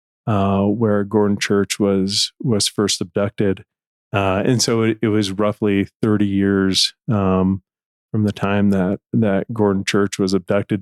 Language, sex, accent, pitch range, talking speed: English, male, American, 100-110 Hz, 150 wpm